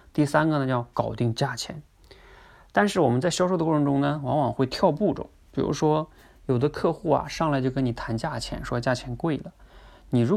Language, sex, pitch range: Chinese, male, 115-145 Hz